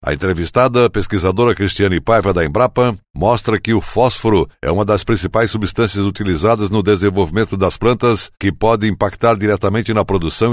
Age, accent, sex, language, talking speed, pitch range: 60-79, Brazilian, male, Portuguese, 155 wpm, 100-120 Hz